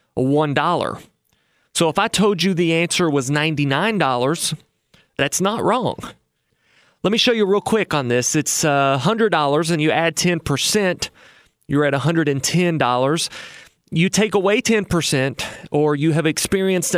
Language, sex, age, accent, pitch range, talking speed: English, male, 30-49, American, 145-195 Hz, 135 wpm